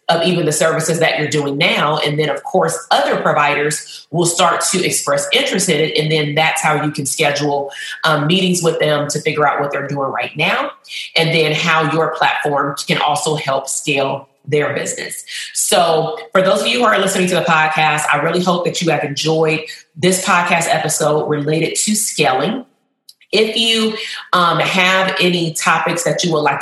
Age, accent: 30-49, American